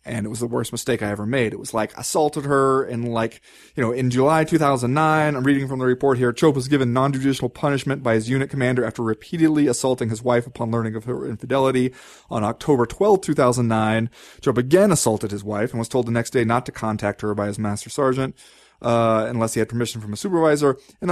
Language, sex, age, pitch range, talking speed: English, male, 30-49, 125-185 Hz, 225 wpm